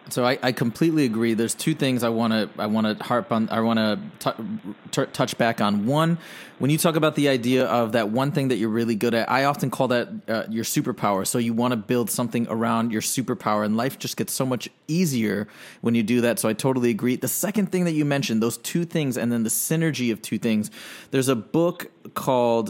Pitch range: 110-140 Hz